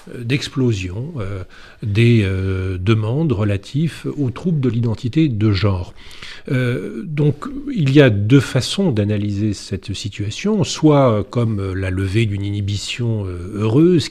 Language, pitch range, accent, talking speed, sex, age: French, 105-130 Hz, French, 125 wpm, male, 40-59